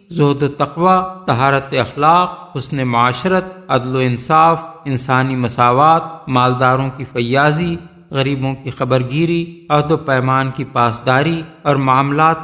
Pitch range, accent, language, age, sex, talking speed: 130-170 Hz, Indian, English, 50-69, male, 110 wpm